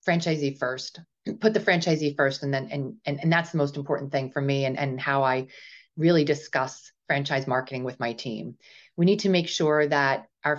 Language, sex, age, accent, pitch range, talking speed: English, female, 30-49, American, 140-170 Hz, 205 wpm